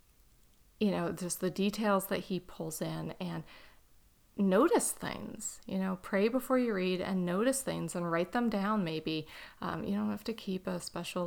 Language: English